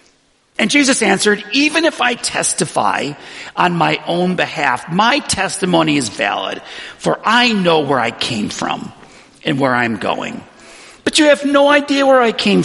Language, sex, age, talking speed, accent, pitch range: English, male, 50-69, 160 wpm, American, 140-220 Hz